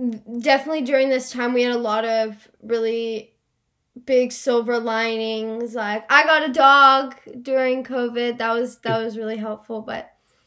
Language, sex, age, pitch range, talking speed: English, female, 10-29, 230-275 Hz, 155 wpm